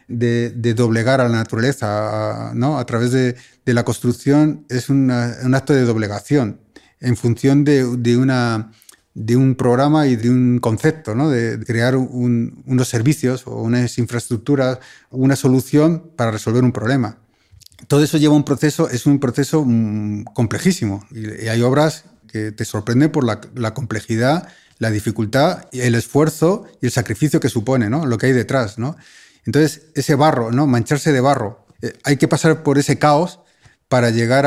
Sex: male